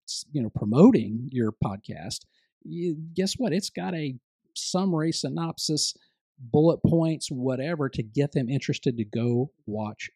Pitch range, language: 115-150 Hz, English